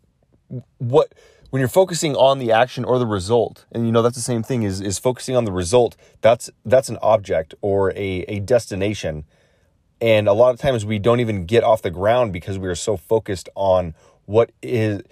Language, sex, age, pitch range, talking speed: English, male, 30-49, 95-125 Hz, 205 wpm